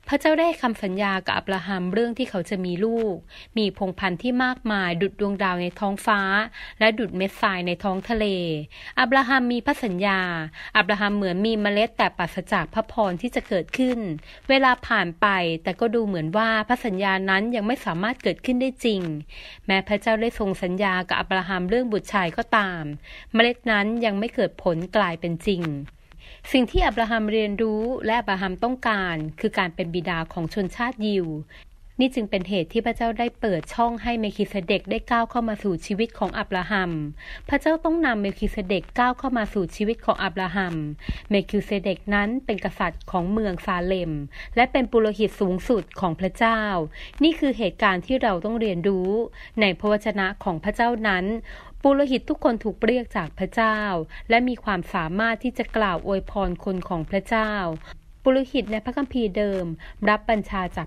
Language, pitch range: Thai, 185-230 Hz